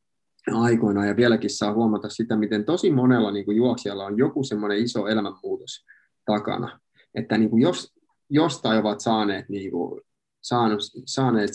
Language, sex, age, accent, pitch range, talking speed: Finnish, male, 20-39, native, 105-125 Hz, 145 wpm